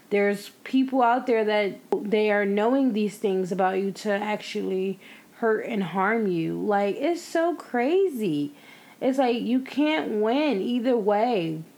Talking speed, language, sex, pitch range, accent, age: 150 wpm, English, female, 195-230 Hz, American, 20-39